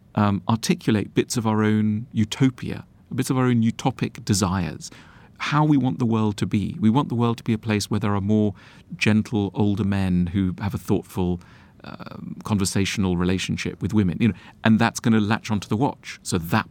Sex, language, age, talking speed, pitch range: male, English, 40-59, 200 wpm, 100-115 Hz